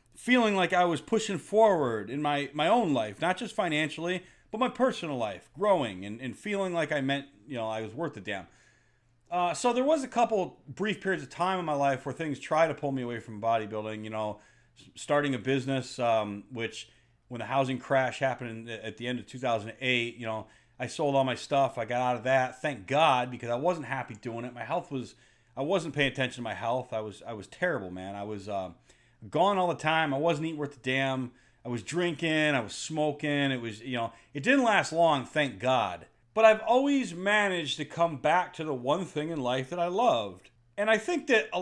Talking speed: 230 wpm